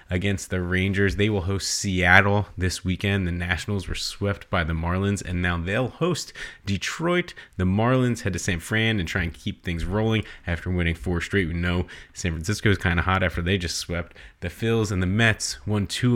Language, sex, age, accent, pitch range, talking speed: English, male, 30-49, American, 90-110 Hz, 210 wpm